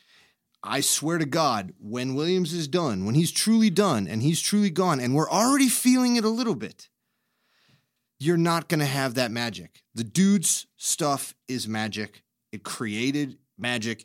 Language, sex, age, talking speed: English, male, 30-49, 165 wpm